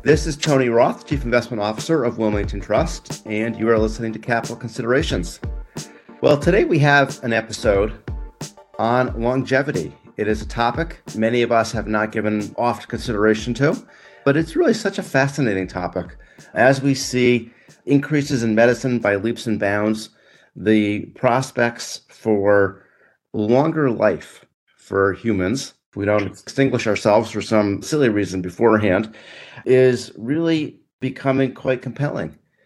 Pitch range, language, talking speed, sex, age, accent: 105-125 Hz, English, 140 wpm, male, 40-59, American